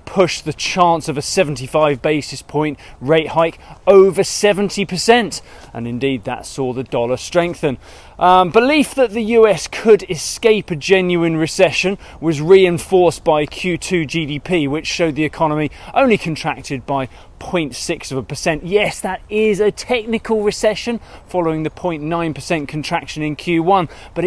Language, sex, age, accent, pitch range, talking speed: English, male, 20-39, British, 150-195 Hz, 150 wpm